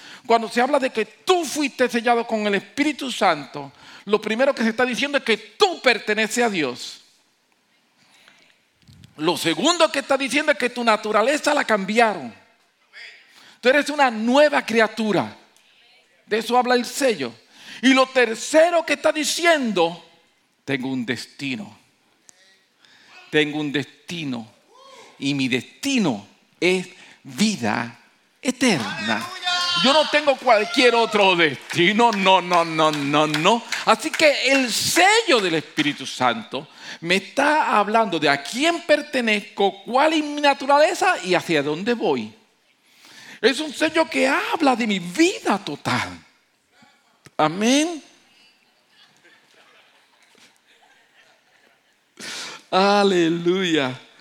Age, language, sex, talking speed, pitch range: 50-69, English, male, 120 wpm, 170-280 Hz